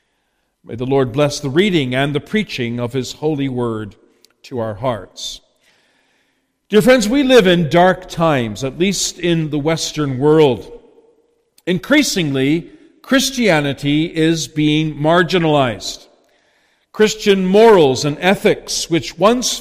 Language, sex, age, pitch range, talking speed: English, male, 50-69, 155-220 Hz, 120 wpm